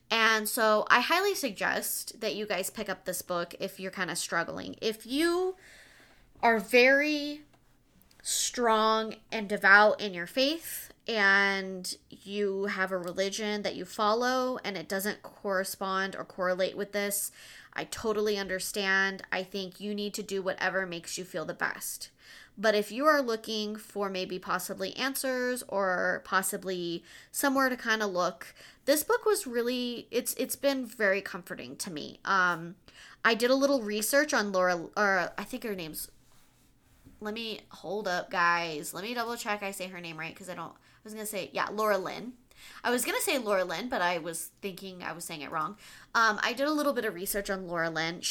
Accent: American